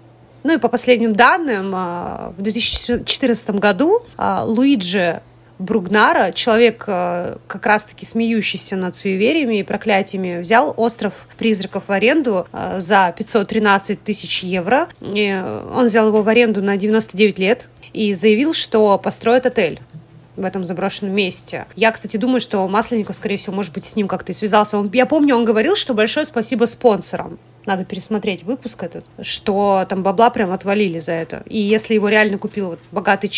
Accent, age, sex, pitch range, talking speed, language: native, 30-49, female, 190-230 Hz, 150 wpm, Russian